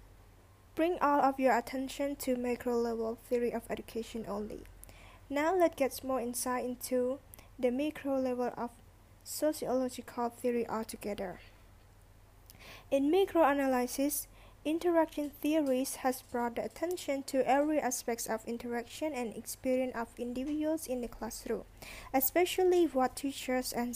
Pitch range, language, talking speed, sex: 240-290 Hz, English, 120 wpm, female